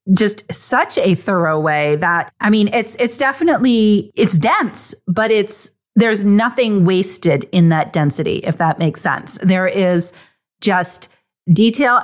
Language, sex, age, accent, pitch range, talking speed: English, female, 40-59, American, 170-210 Hz, 145 wpm